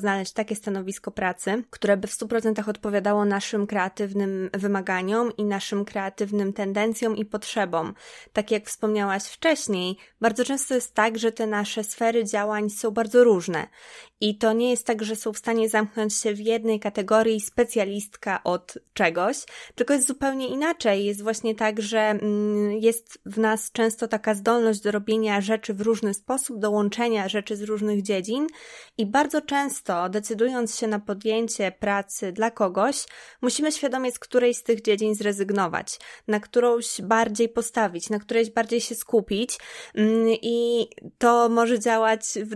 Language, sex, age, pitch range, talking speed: Polish, female, 20-39, 205-230 Hz, 155 wpm